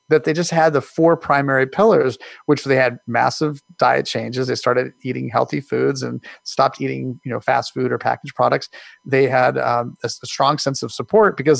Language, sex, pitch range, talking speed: English, male, 125-150 Hz, 200 wpm